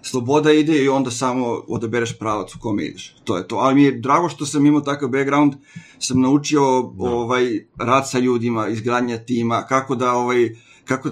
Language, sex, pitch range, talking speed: Croatian, male, 120-145 Hz, 185 wpm